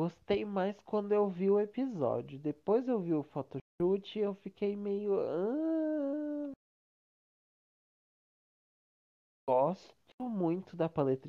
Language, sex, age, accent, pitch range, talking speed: Portuguese, male, 20-39, Brazilian, 135-190 Hz, 110 wpm